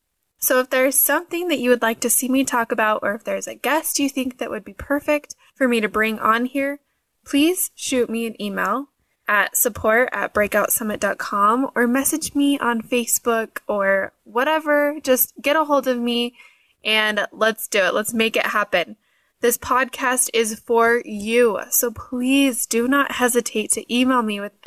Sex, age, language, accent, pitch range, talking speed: female, 10-29, English, American, 220-280 Hz, 180 wpm